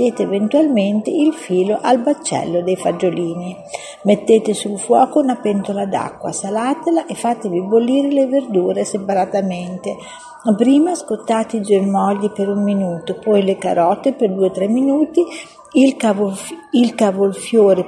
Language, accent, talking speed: English, Italian, 125 wpm